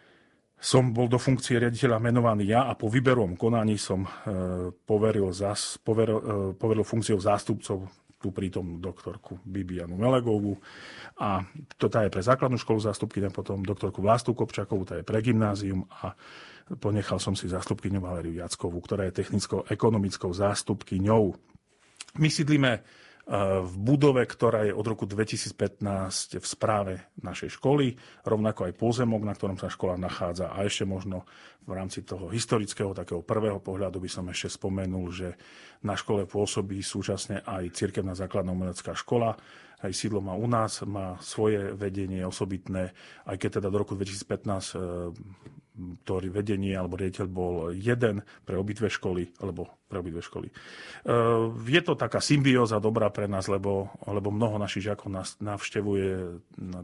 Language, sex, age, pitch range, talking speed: Slovak, male, 40-59, 95-110 Hz, 150 wpm